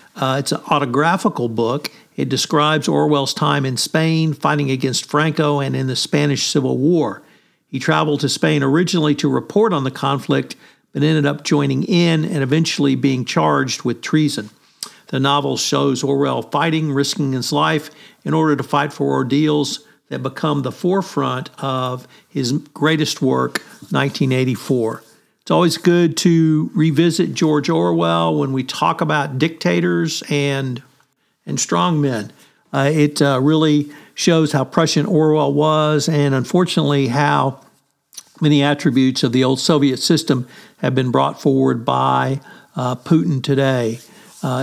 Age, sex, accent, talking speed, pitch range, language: 50-69, male, American, 145 wpm, 135-155 Hz, English